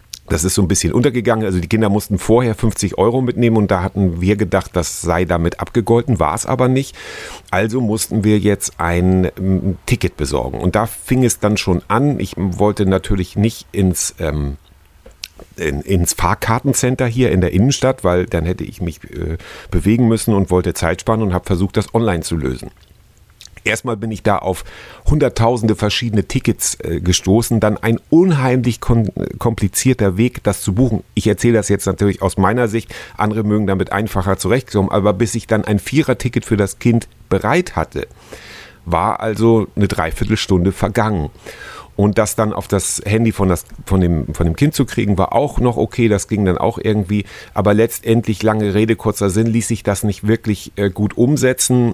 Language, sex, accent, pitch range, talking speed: German, male, German, 95-115 Hz, 180 wpm